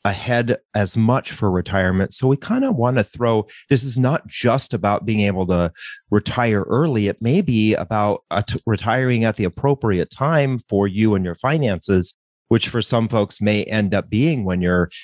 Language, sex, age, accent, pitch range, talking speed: English, male, 30-49, American, 95-120 Hz, 185 wpm